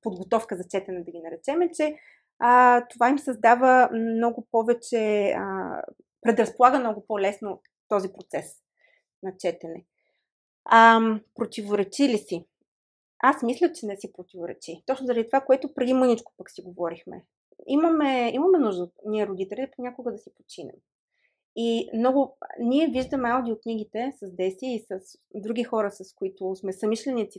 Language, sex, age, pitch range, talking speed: Bulgarian, female, 30-49, 195-250 Hz, 140 wpm